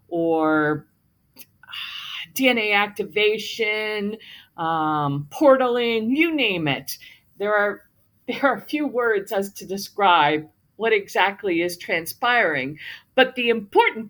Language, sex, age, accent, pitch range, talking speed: English, female, 50-69, American, 200-280 Hz, 100 wpm